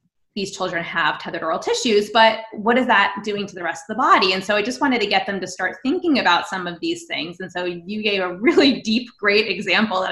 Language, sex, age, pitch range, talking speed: English, female, 20-39, 185-235 Hz, 255 wpm